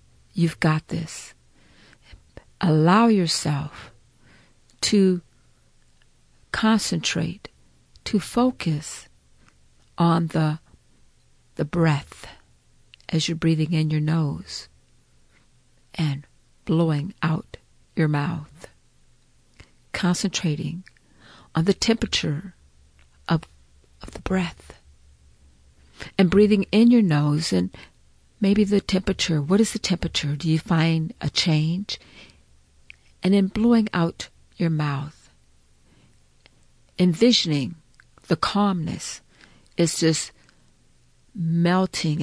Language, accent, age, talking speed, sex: English, American, 50-69, 90 wpm, female